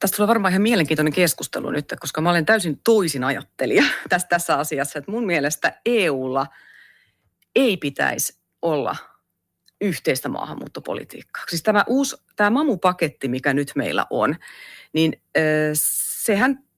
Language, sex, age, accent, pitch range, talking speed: Finnish, female, 30-49, native, 145-215 Hz, 130 wpm